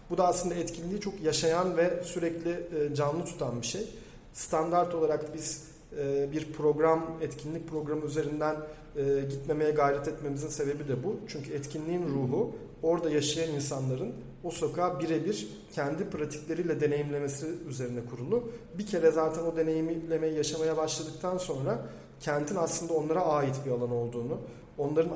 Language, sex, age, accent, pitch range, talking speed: Turkish, male, 40-59, native, 145-165 Hz, 135 wpm